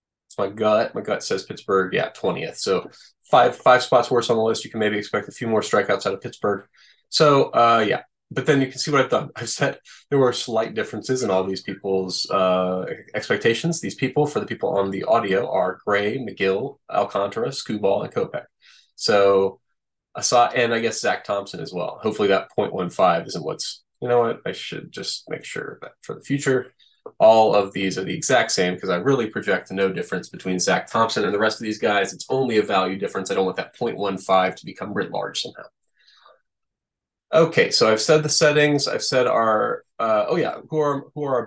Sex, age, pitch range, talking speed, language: male, 20-39, 100-135 Hz, 210 wpm, English